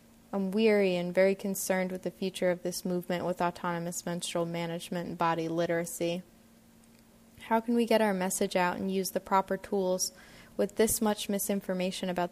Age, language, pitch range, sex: 20-39, English, 180-200 Hz, female